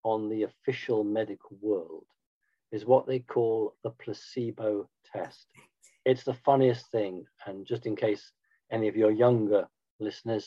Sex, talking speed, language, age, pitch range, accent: male, 145 wpm, English, 50-69, 115-145 Hz, British